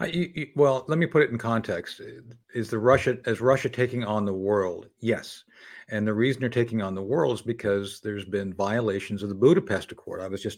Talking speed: 220 wpm